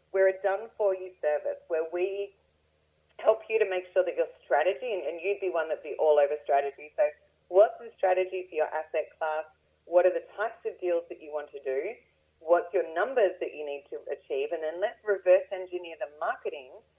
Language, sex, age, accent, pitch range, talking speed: English, female, 30-49, Australian, 165-250 Hz, 210 wpm